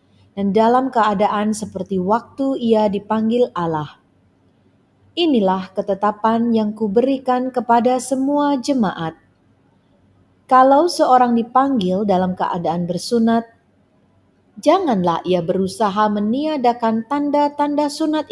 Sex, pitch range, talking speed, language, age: female, 185-255 Hz, 90 wpm, Indonesian, 30-49